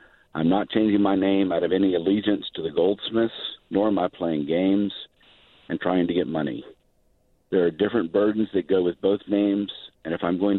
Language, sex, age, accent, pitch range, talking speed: English, male, 50-69, American, 85-100 Hz, 200 wpm